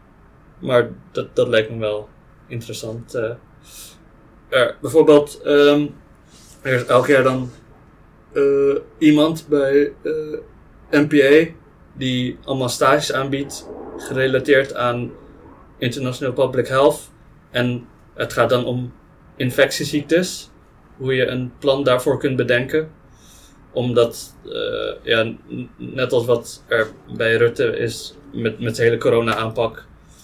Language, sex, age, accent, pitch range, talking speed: Dutch, male, 20-39, Dutch, 115-145 Hz, 115 wpm